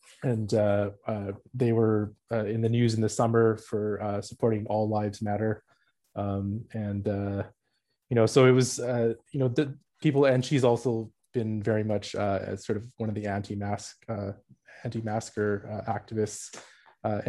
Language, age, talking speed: English, 20-39, 165 wpm